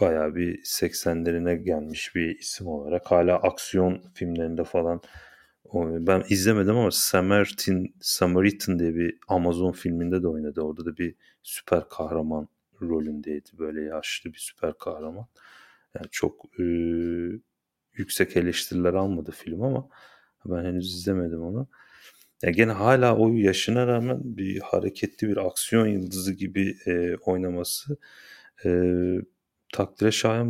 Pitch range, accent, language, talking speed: 85-100 Hz, native, Turkish, 115 wpm